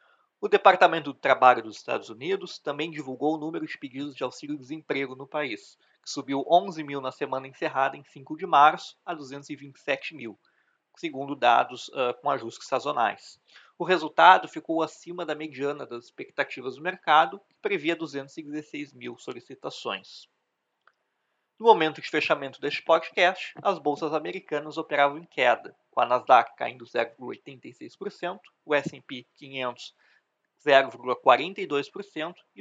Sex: male